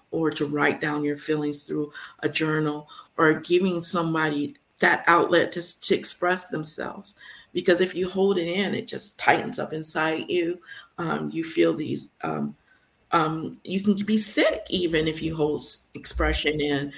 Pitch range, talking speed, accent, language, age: 155-185 Hz, 165 wpm, American, English, 50-69